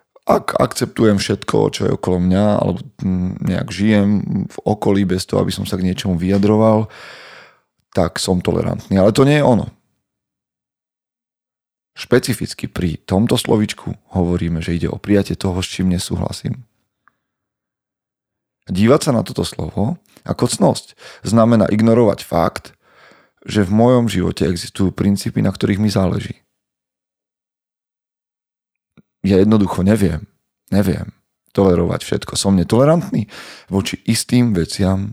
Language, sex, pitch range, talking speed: Slovak, male, 95-110 Hz, 125 wpm